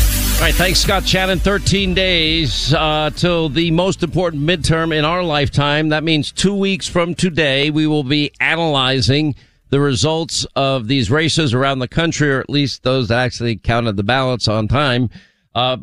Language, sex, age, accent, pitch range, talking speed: English, male, 50-69, American, 125-160 Hz, 175 wpm